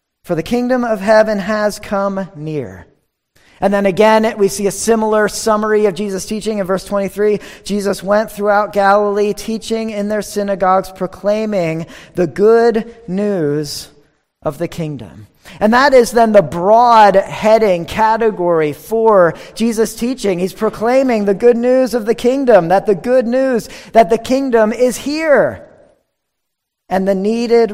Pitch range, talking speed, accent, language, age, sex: 170-220 Hz, 145 wpm, American, English, 40-59, male